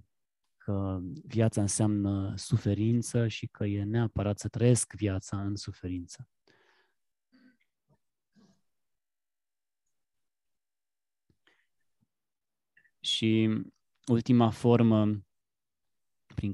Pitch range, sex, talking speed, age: 95-115 Hz, male, 60 wpm, 20-39